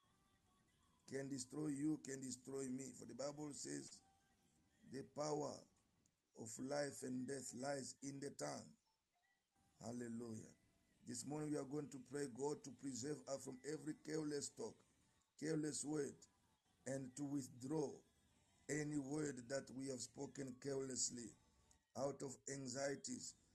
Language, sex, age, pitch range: English, male, 50-69, 125-145 Hz